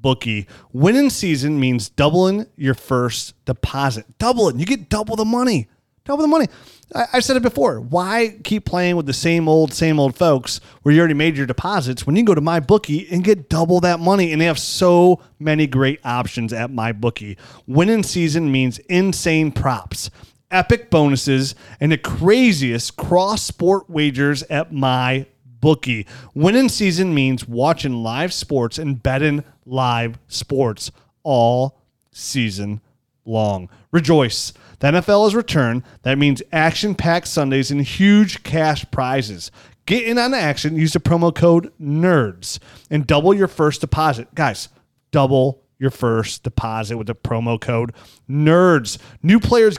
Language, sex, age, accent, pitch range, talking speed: English, male, 30-49, American, 125-175 Hz, 155 wpm